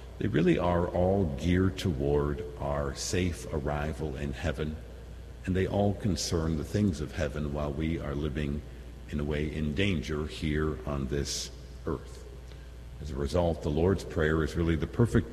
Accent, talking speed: American, 165 wpm